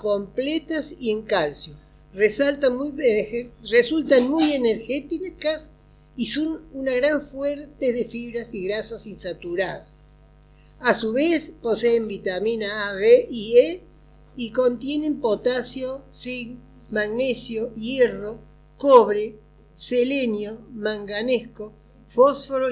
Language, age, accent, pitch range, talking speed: Spanish, 40-59, Argentinian, 205-265 Hz, 100 wpm